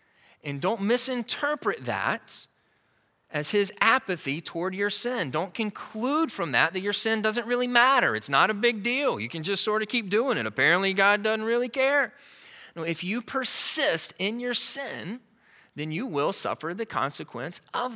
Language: English